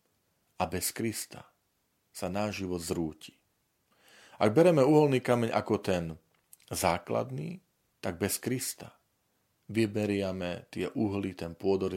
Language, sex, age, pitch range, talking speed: Slovak, male, 40-59, 85-110 Hz, 110 wpm